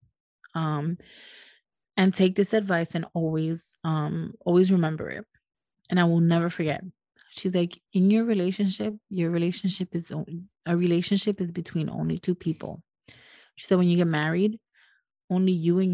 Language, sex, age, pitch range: English, female, 20-39, 160-190 Hz